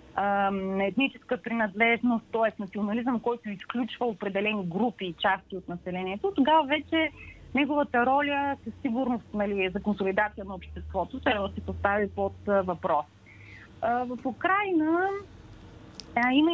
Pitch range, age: 190-250 Hz, 30-49